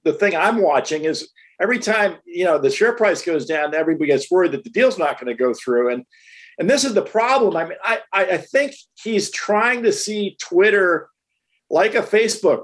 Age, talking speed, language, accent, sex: 50-69, 215 wpm, English, American, male